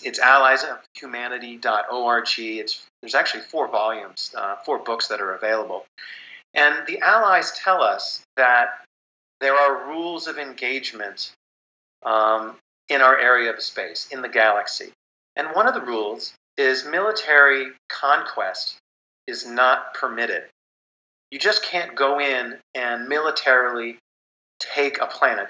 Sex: male